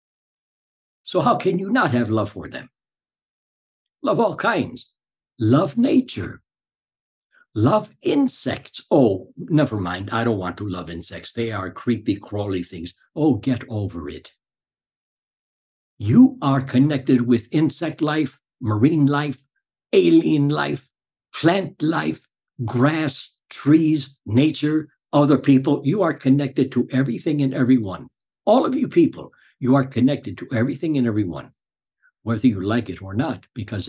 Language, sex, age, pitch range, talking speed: English, male, 60-79, 115-155 Hz, 135 wpm